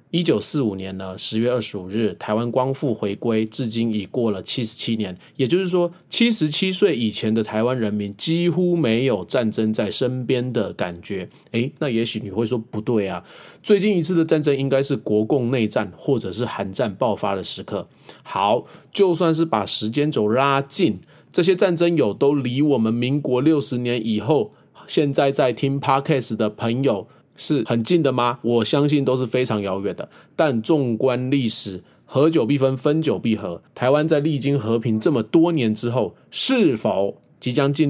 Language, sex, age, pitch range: Chinese, male, 20-39, 110-150 Hz